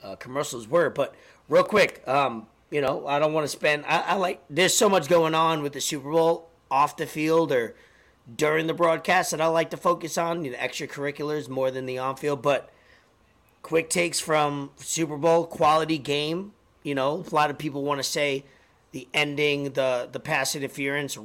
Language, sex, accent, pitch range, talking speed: English, male, American, 130-160 Hz, 200 wpm